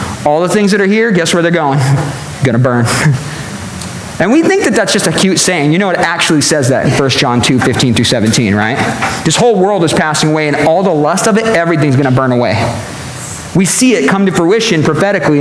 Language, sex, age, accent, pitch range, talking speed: English, male, 40-59, American, 135-190 Hz, 225 wpm